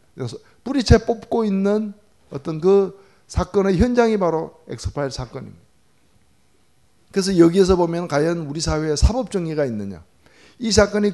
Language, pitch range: Korean, 115-195 Hz